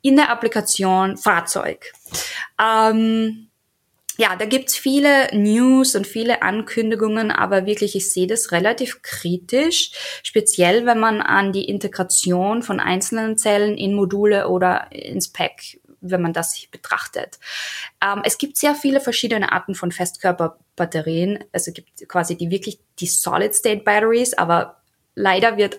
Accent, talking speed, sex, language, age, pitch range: German, 140 wpm, female, German, 20-39, 180-225 Hz